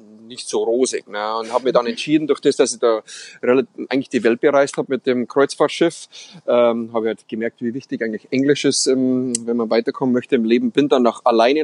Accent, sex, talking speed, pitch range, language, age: German, male, 215 wpm, 115-140 Hz, German, 30-49